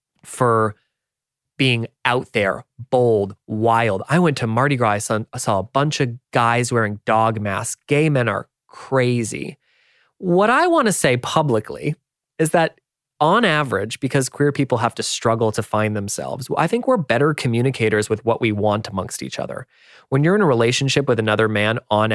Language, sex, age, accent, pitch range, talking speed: English, male, 20-39, American, 110-150 Hz, 175 wpm